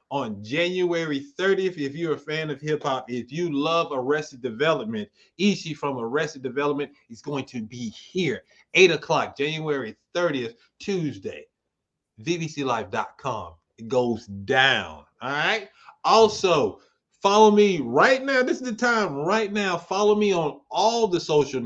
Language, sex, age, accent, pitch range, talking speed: English, male, 30-49, American, 130-175 Hz, 145 wpm